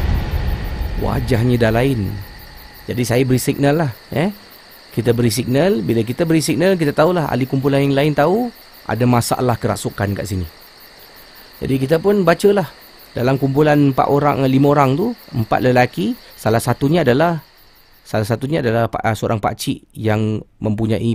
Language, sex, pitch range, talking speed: Malay, male, 105-155 Hz, 145 wpm